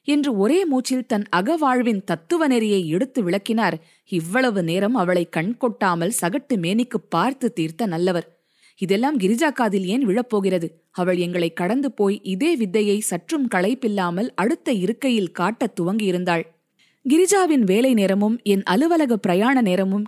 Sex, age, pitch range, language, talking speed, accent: female, 20-39, 185-260 Hz, Tamil, 125 wpm, native